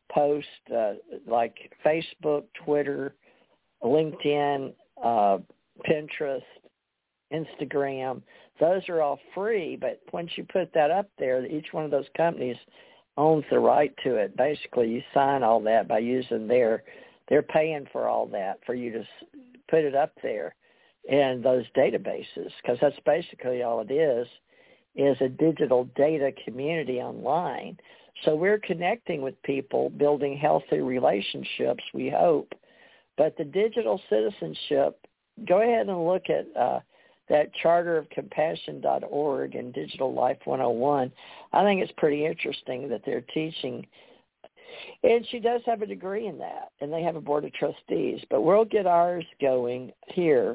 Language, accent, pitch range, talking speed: English, American, 140-190 Hz, 140 wpm